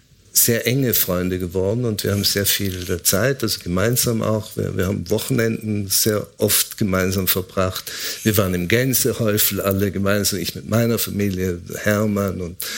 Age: 50-69